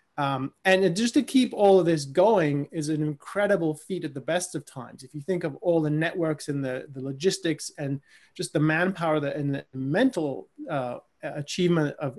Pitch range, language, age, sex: 145-175 Hz, English, 20-39, male